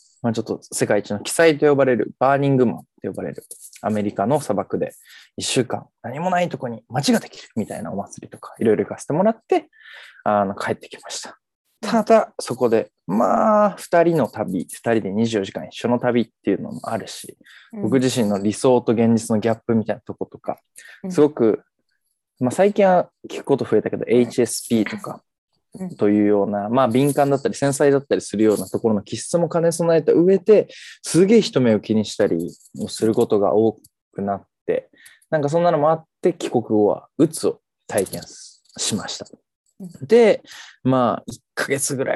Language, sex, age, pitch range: Japanese, male, 20-39, 110-170 Hz